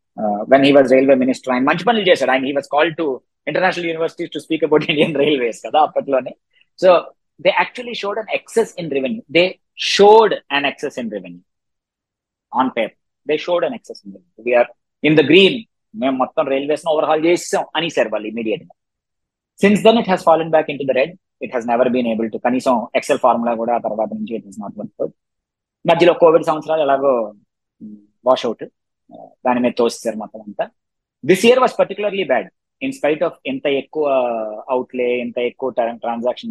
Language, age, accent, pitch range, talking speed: Telugu, 20-39, native, 120-170 Hz, 180 wpm